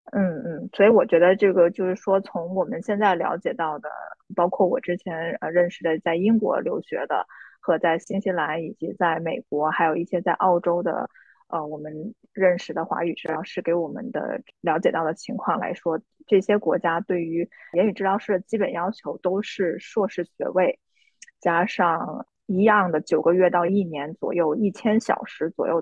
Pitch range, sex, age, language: 170-205 Hz, female, 20-39, Chinese